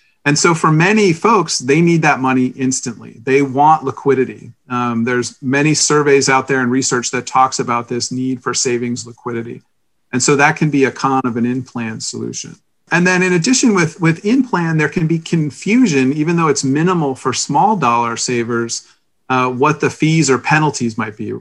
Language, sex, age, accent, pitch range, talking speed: English, male, 40-59, American, 125-150 Hz, 190 wpm